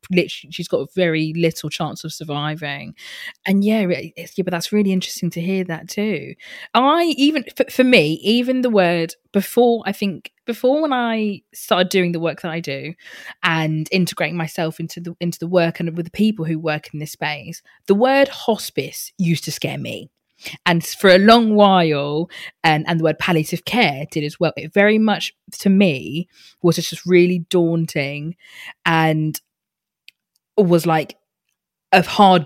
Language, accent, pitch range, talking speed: English, British, 155-190 Hz, 170 wpm